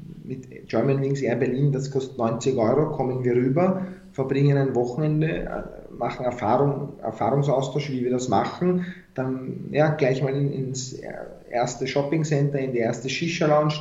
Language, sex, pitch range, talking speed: German, male, 125-145 Hz, 145 wpm